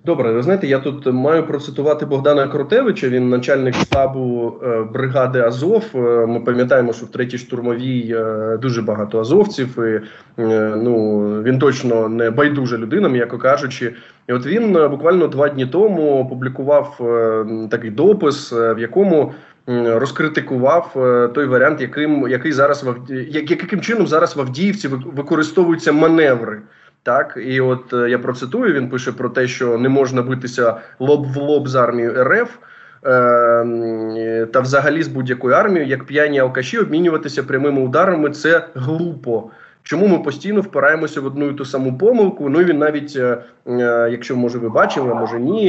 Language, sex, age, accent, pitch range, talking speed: Ukrainian, male, 20-39, native, 120-145 Hz, 155 wpm